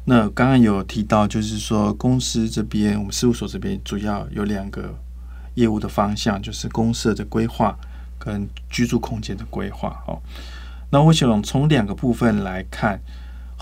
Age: 20-39